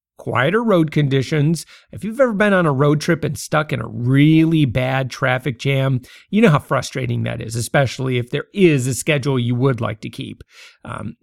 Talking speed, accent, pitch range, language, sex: 200 wpm, American, 130-180 Hz, English, male